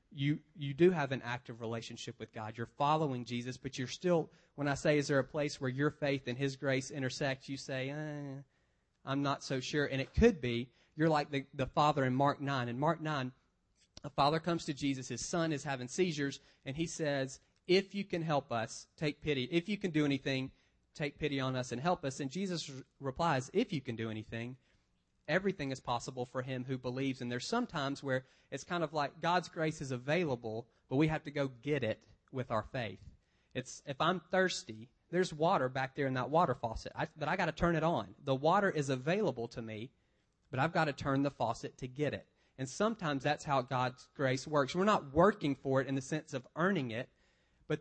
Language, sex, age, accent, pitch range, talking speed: English, male, 30-49, American, 130-155 Hz, 220 wpm